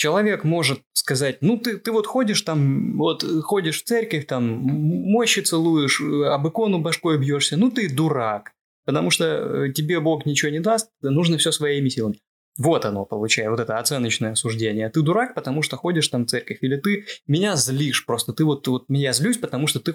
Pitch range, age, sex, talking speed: 120-165 Hz, 20-39, male, 190 wpm